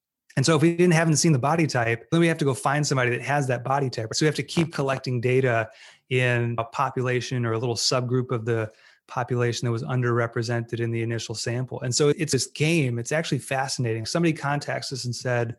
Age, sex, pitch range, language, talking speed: 20-39, male, 120-145 Hz, English, 225 wpm